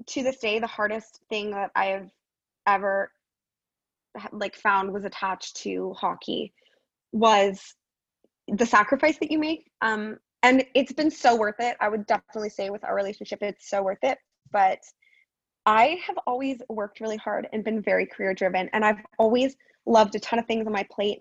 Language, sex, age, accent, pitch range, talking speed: English, female, 20-39, American, 195-255 Hz, 180 wpm